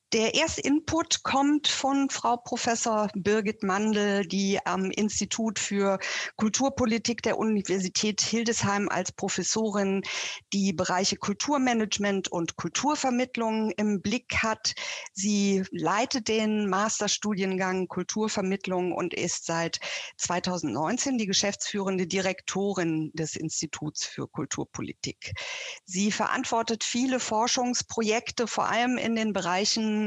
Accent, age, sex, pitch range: German, 50-69, female, 185-230 Hz